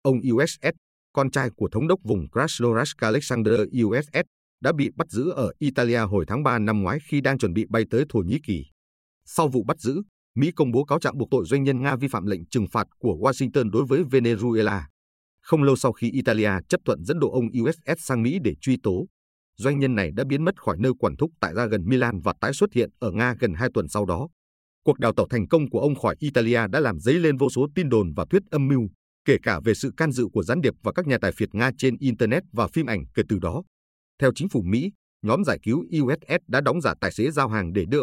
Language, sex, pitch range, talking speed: Vietnamese, male, 105-140 Hz, 250 wpm